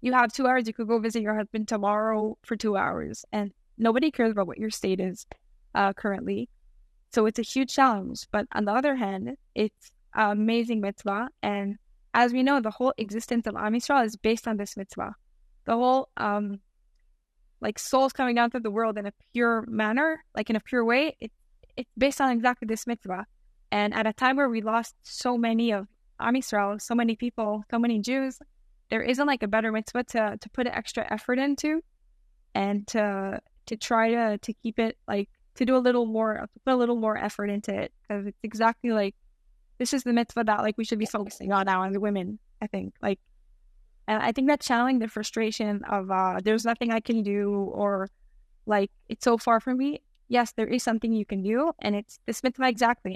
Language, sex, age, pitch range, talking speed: English, female, 10-29, 210-245 Hz, 205 wpm